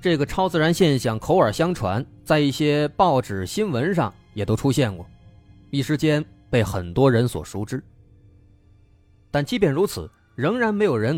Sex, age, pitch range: male, 30-49, 105-165 Hz